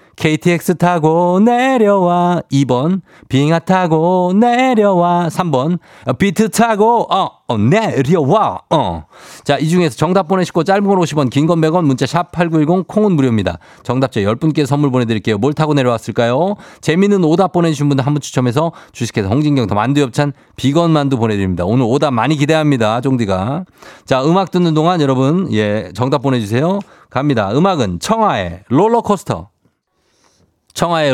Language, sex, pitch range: Korean, male, 120-175 Hz